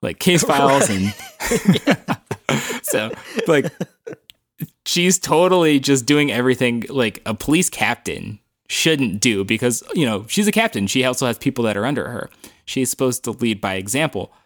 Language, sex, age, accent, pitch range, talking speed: English, male, 20-39, American, 100-135 Hz, 155 wpm